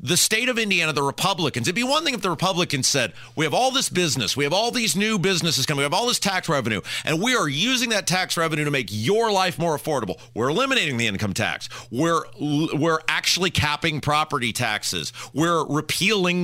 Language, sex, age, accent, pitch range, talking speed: English, male, 40-59, American, 130-205 Hz, 210 wpm